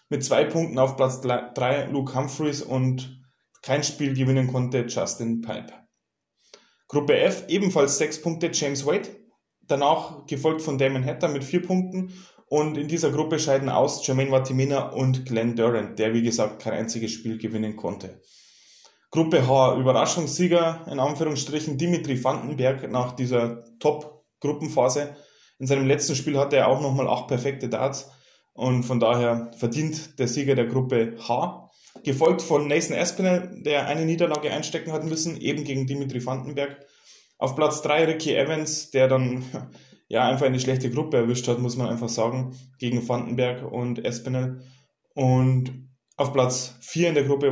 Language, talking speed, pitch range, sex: German, 155 wpm, 125-150 Hz, male